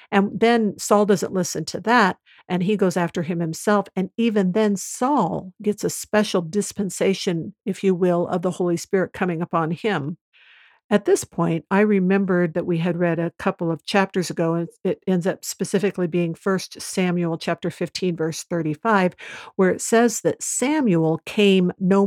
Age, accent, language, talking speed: 50-69, American, English, 175 wpm